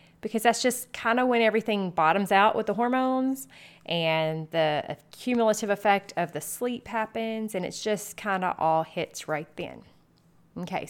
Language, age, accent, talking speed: English, 30-49, American, 165 wpm